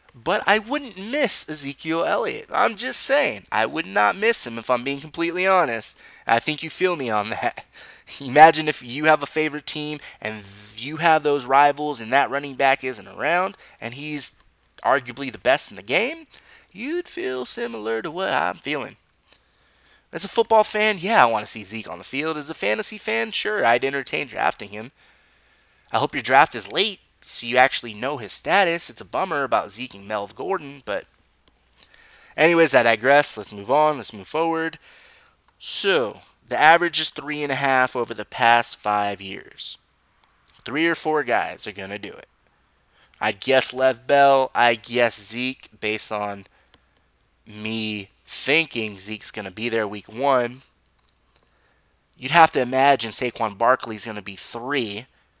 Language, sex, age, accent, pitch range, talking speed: English, male, 20-39, American, 115-160 Hz, 170 wpm